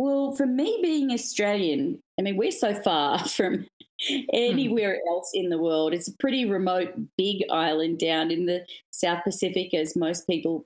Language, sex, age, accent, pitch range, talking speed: English, female, 30-49, Australian, 170-230 Hz, 170 wpm